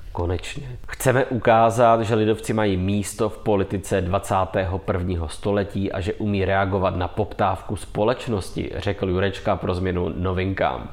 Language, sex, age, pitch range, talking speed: English, male, 20-39, 95-110 Hz, 125 wpm